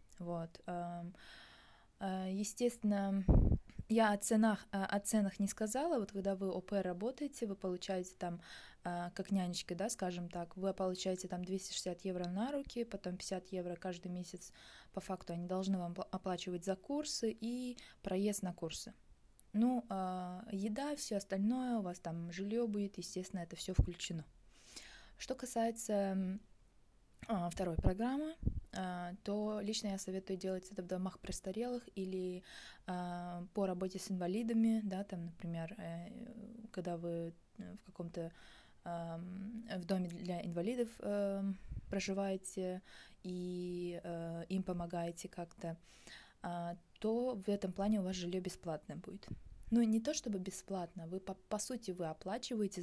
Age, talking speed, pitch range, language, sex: 20-39, 130 wpm, 180-210 Hz, English, female